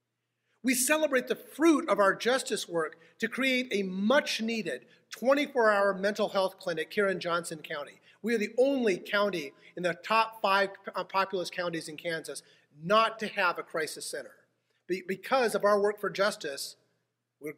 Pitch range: 175-240 Hz